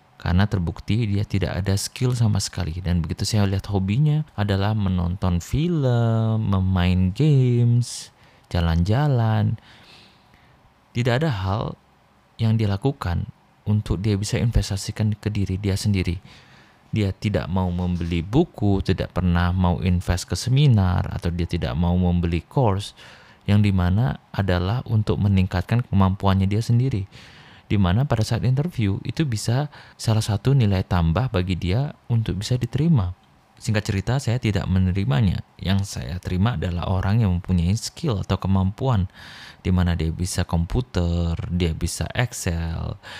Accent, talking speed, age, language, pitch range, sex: native, 130 wpm, 30-49, Indonesian, 90-115 Hz, male